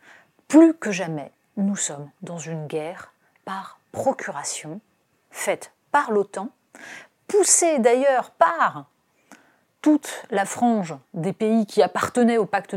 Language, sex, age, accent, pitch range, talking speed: French, female, 40-59, French, 175-260 Hz, 115 wpm